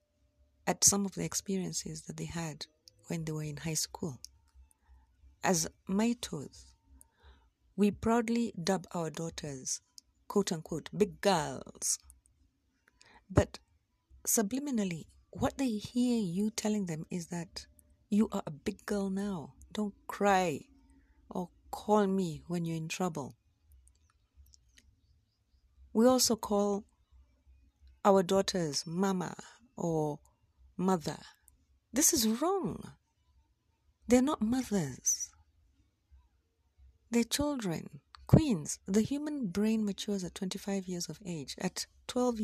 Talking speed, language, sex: 110 wpm, English, female